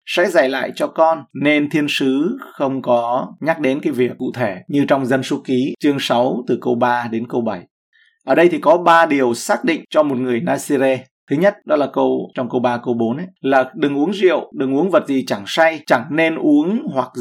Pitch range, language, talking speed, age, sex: 130-175 Hz, Vietnamese, 230 wpm, 20-39, male